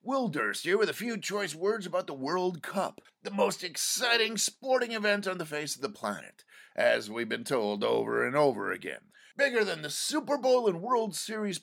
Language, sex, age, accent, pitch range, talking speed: English, male, 50-69, American, 135-215 Hz, 200 wpm